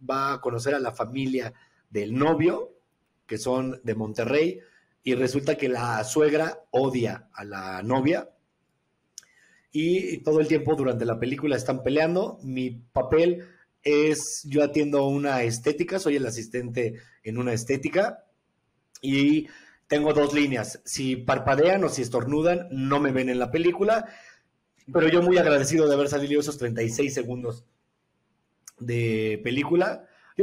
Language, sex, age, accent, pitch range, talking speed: Spanish, male, 40-59, Mexican, 130-165 Hz, 140 wpm